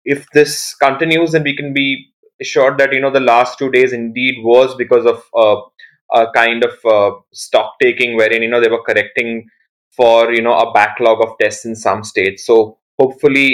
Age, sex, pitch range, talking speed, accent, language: 20-39, male, 115-140 Hz, 195 wpm, Indian, English